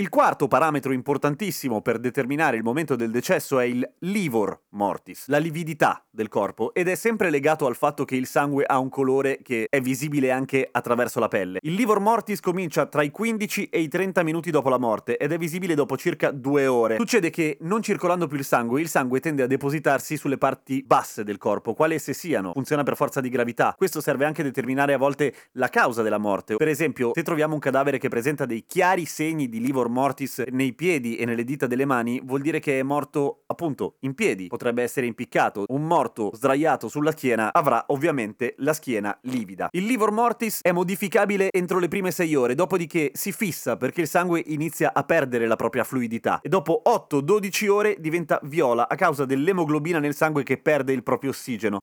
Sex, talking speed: male, 205 wpm